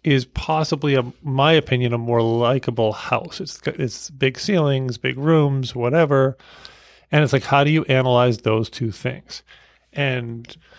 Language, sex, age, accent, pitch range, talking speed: English, male, 40-59, American, 125-145 Hz, 150 wpm